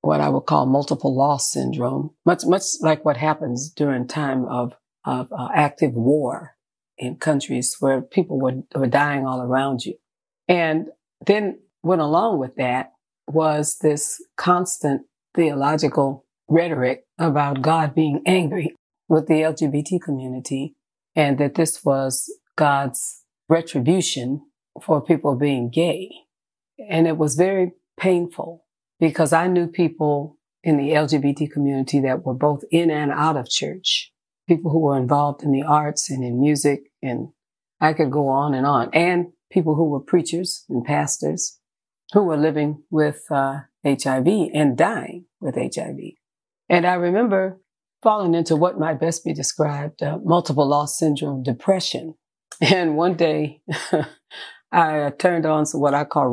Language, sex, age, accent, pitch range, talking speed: English, female, 40-59, American, 140-165 Hz, 145 wpm